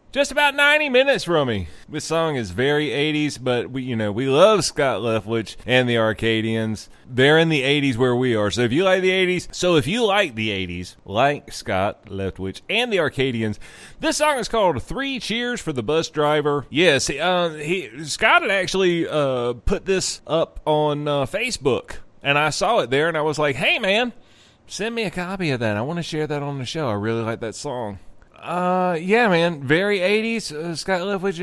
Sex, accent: male, American